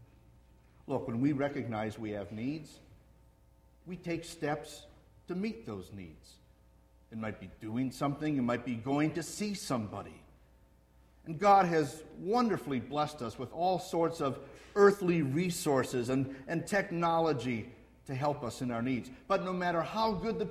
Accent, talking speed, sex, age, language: American, 155 wpm, male, 50-69, English